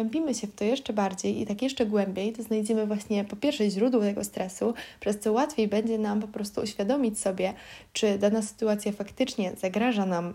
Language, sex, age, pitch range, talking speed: Polish, female, 20-39, 205-240 Hz, 190 wpm